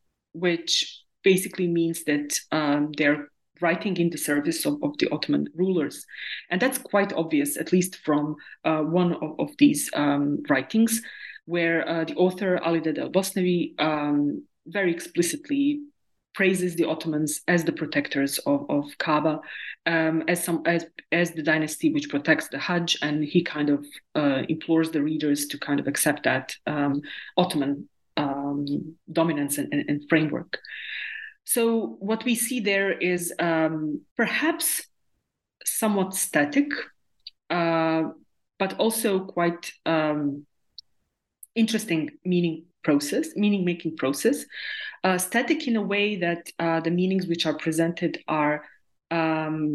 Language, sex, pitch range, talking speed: English, female, 155-195 Hz, 135 wpm